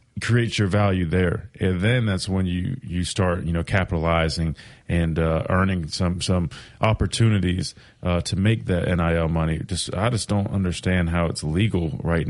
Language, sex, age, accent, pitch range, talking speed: English, male, 30-49, American, 85-100 Hz, 170 wpm